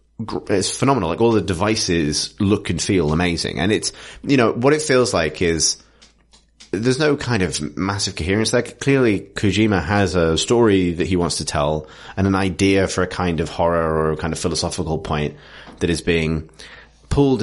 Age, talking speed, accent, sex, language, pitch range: 30-49, 185 wpm, British, male, English, 85-105 Hz